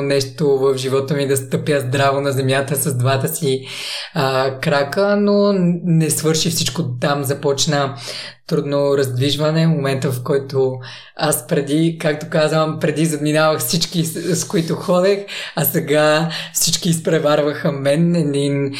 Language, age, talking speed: Bulgarian, 20-39, 130 wpm